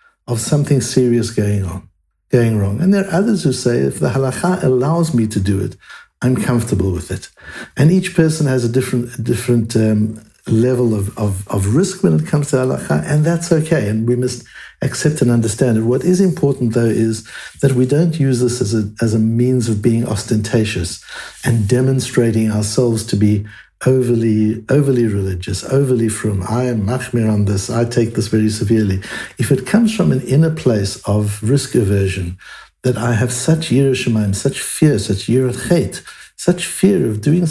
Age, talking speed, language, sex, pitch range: 60-79, 185 wpm, English, male, 110-140 Hz